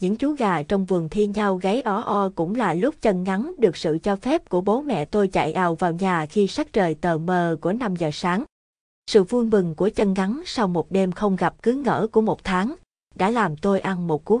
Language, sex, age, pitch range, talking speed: Vietnamese, female, 20-39, 180-225 Hz, 240 wpm